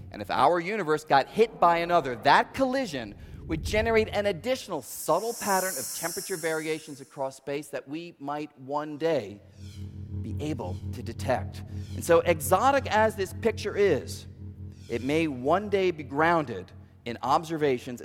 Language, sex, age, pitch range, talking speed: English, male, 40-59, 120-195 Hz, 150 wpm